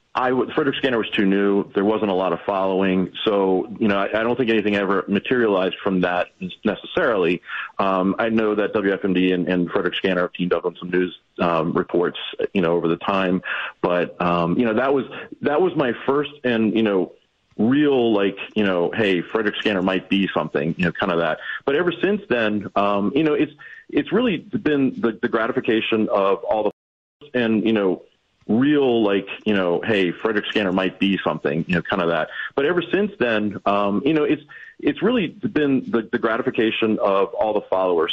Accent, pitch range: American, 95-120 Hz